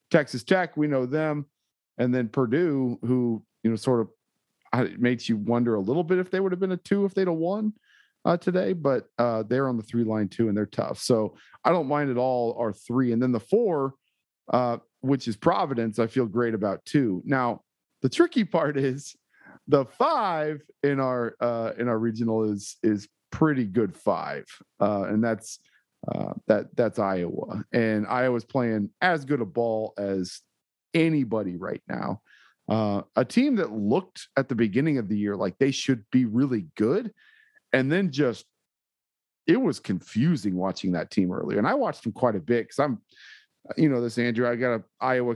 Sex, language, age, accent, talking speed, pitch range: male, English, 40-59, American, 190 wpm, 115-140 Hz